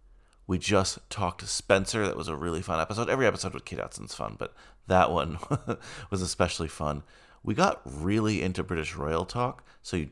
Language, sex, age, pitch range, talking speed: English, male, 30-49, 90-125 Hz, 190 wpm